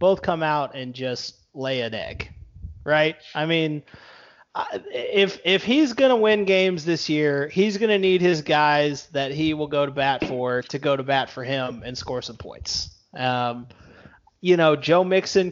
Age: 30-49